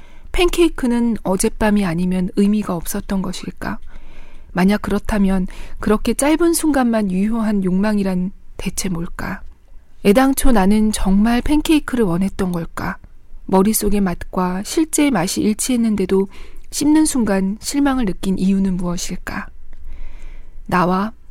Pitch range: 185-240 Hz